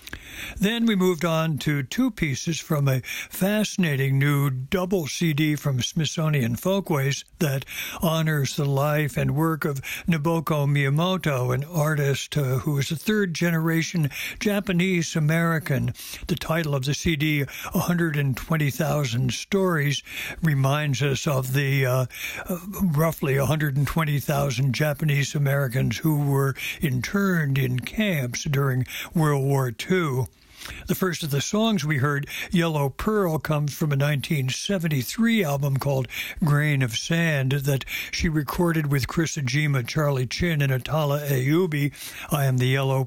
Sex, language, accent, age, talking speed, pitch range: male, English, American, 60-79, 125 wpm, 140-170 Hz